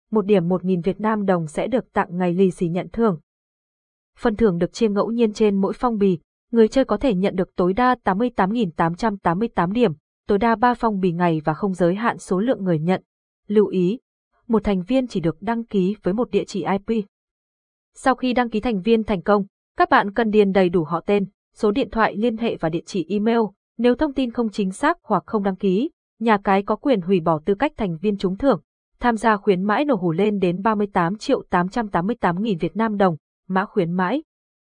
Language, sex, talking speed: Vietnamese, female, 220 wpm